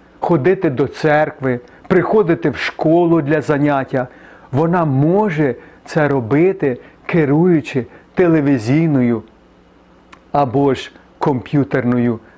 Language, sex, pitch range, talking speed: Ukrainian, male, 130-185 Hz, 80 wpm